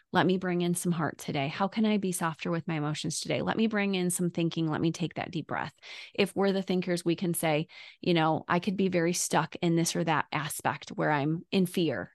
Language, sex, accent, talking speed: English, female, American, 250 wpm